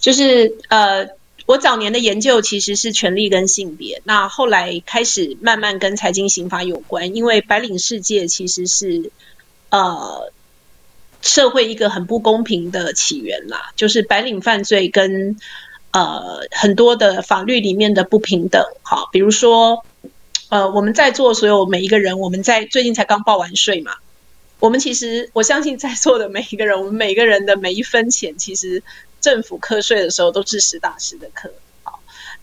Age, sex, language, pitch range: 30-49, female, Chinese, 190-235 Hz